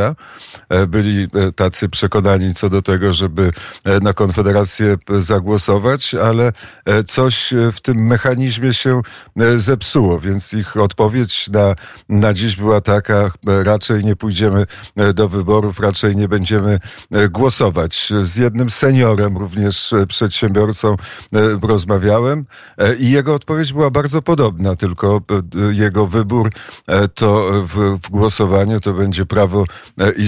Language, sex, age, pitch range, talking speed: Polish, male, 50-69, 95-110 Hz, 115 wpm